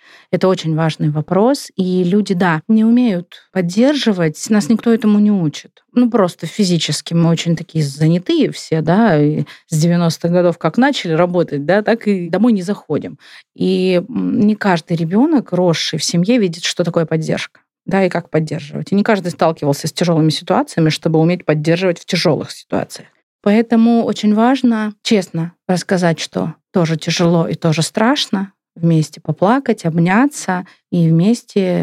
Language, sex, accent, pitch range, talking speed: Russian, female, native, 165-205 Hz, 155 wpm